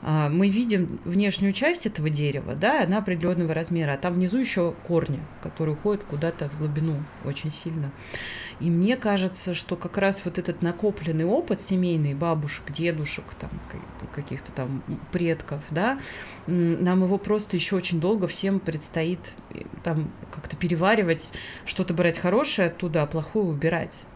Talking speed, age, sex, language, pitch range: 145 wpm, 30-49, female, Russian, 150-185 Hz